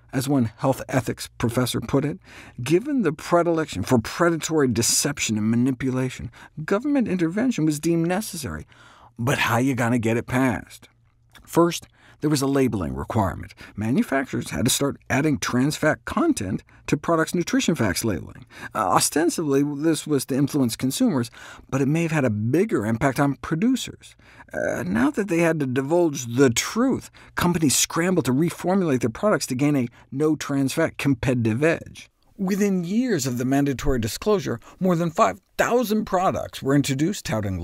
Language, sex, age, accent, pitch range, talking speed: English, male, 50-69, American, 125-175 Hz, 155 wpm